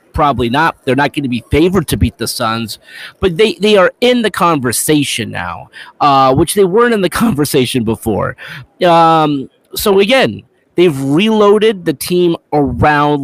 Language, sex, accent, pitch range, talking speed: English, male, American, 130-180 Hz, 165 wpm